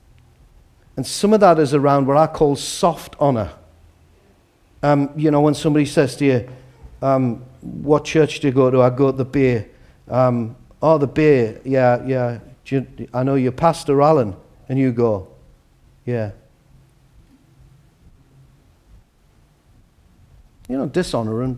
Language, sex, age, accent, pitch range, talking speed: English, male, 50-69, British, 115-145 Hz, 140 wpm